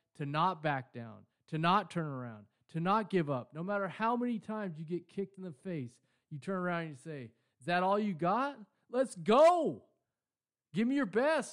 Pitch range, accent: 125-180 Hz, American